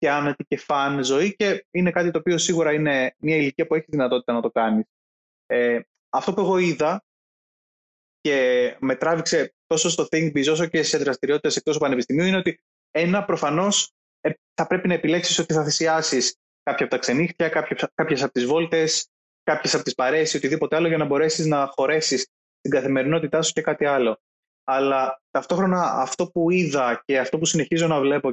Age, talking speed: 20-39, 180 wpm